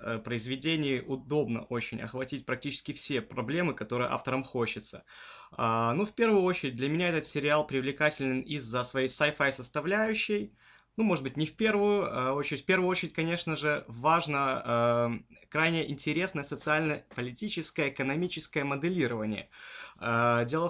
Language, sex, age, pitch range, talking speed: Russian, male, 20-39, 125-170 Hz, 120 wpm